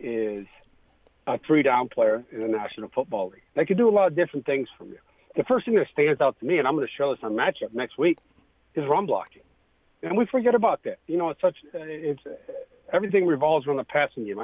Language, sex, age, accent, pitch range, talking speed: English, male, 50-69, American, 120-160 Hz, 235 wpm